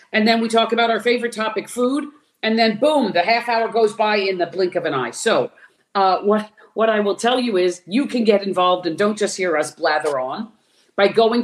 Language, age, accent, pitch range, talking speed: English, 50-69, American, 170-215 Hz, 235 wpm